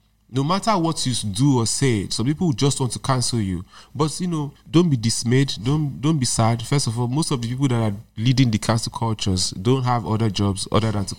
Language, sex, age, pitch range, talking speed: English, male, 30-49, 105-130 Hz, 235 wpm